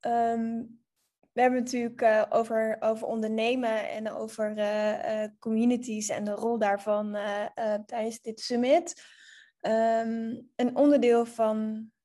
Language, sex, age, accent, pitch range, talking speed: Dutch, female, 10-29, Dutch, 220-255 Hz, 130 wpm